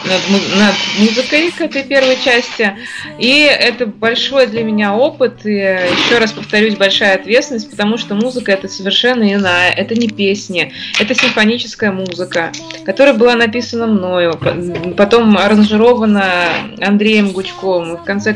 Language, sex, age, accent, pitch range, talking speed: Russian, female, 20-39, native, 185-230 Hz, 130 wpm